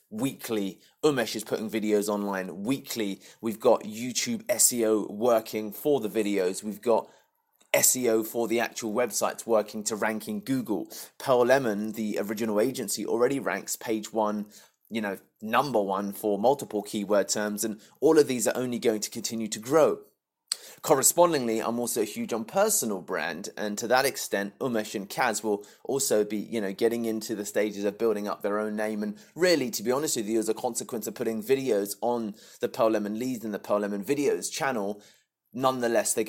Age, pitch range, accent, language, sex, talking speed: 20-39, 105-120 Hz, British, English, male, 185 wpm